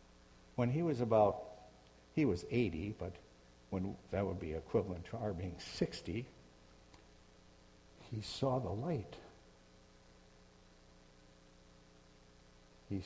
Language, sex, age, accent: English, male, 60-79, American